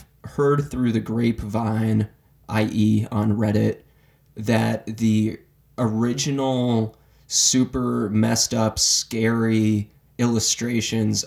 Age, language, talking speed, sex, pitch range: 20-39, English, 80 wpm, male, 110-120 Hz